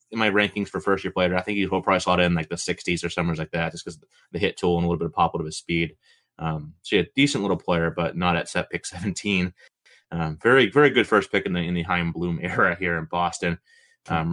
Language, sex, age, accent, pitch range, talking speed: English, male, 30-49, American, 85-105 Hz, 270 wpm